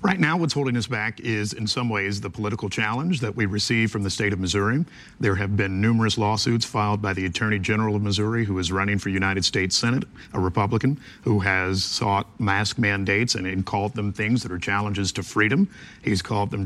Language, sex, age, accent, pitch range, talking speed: English, male, 50-69, American, 100-120 Hz, 215 wpm